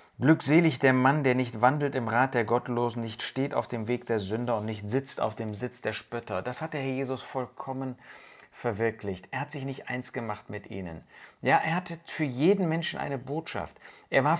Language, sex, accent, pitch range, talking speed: German, male, German, 105-140 Hz, 210 wpm